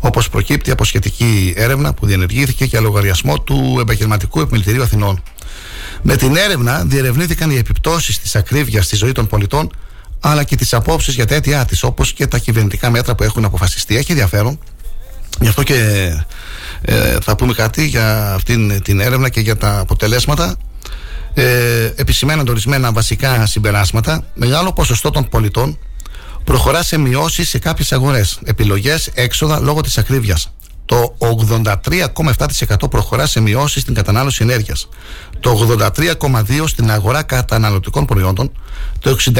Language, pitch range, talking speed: Greek, 105-135 Hz, 140 wpm